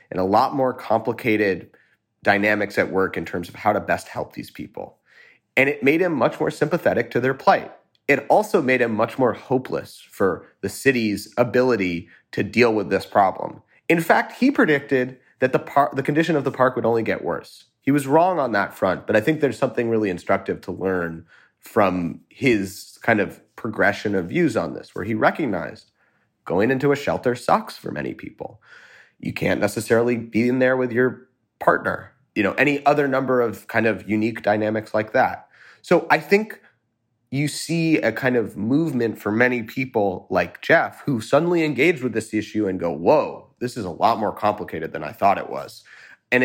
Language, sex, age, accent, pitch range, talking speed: English, male, 30-49, American, 105-135 Hz, 195 wpm